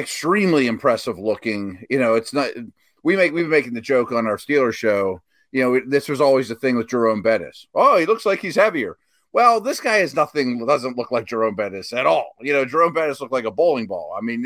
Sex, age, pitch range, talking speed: male, 30-49, 120-180 Hz, 235 wpm